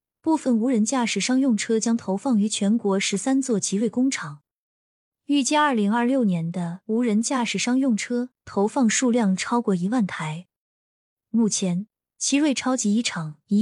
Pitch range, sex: 195-245 Hz, female